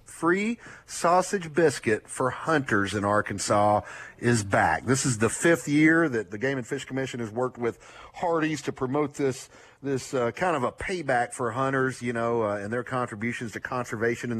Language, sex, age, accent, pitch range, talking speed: English, male, 40-59, American, 115-145 Hz, 185 wpm